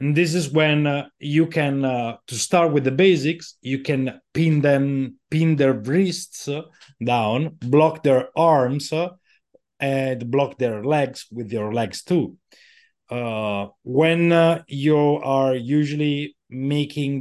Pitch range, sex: 125-155 Hz, male